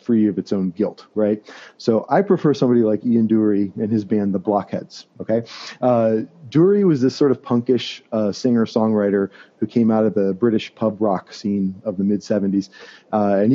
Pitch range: 100-120 Hz